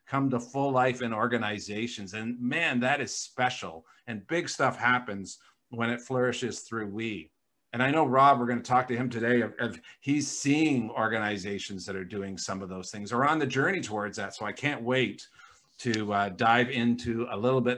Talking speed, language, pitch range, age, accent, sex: 205 wpm, English, 115-135 Hz, 50-69, American, male